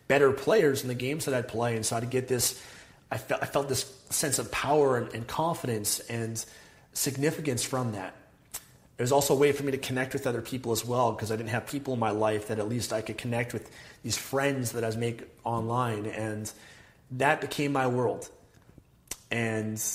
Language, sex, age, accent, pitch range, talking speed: English, male, 30-49, American, 110-130 Hz, 210 wpm